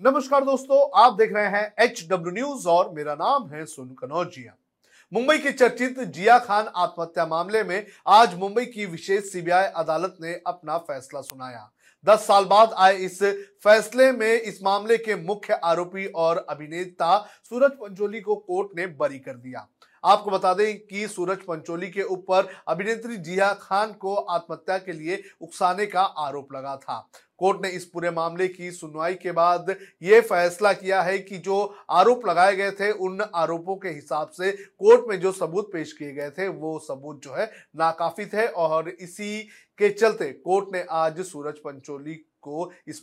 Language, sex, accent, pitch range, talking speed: Hindi, male, native, 170-205 Hz, 170 wpm